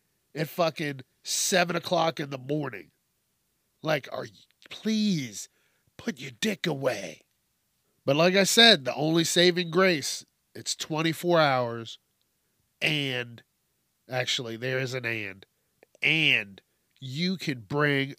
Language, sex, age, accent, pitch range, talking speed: English, male, 40-59, American, 125-160 Hz, 120 wpm